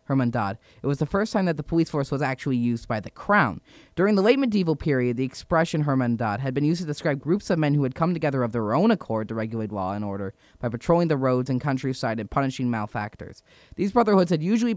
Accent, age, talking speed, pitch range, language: American, 20-39, 235 wpm, 125-165 Hz, English